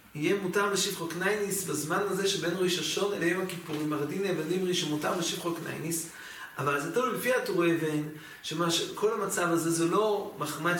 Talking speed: 180 wpm